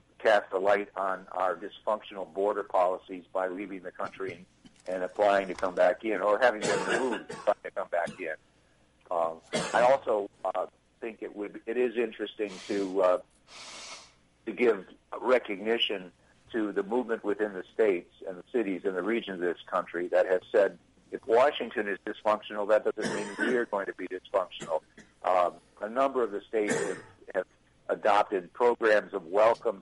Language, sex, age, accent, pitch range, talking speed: English, male, 60-79, American, 95-130 Hz, 165 wpm